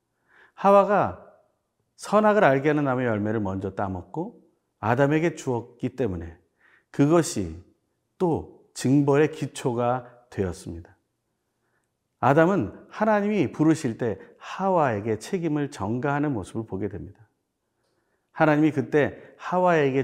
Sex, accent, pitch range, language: male, native, 110-160 Hz, Korean